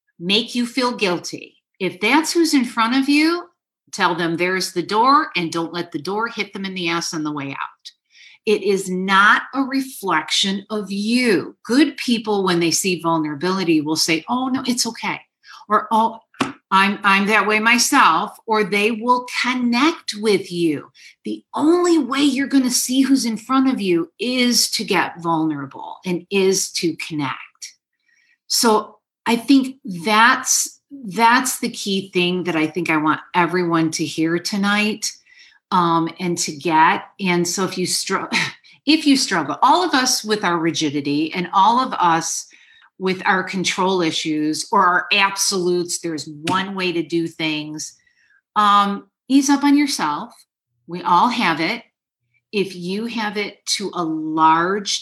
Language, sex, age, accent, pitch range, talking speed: English, female, 50-69, American, 170-250 Hz, 165 wpm